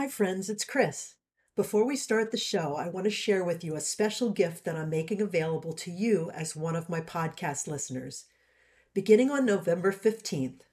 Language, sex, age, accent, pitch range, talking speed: English, female, 50-69, American, 165-215 Hz, 190 wpm